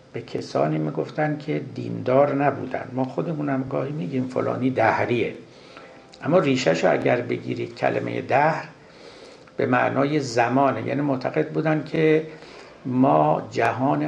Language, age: Persian, 60-79